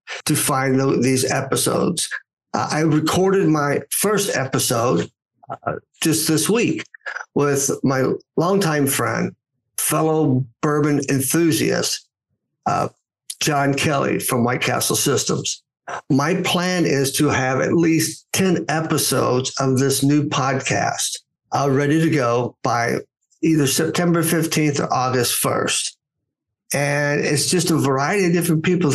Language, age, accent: English, 60-79, American